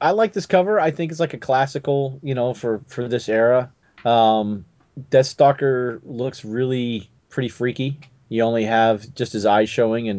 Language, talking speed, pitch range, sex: English, 185 wpm, 115-150 Hz, male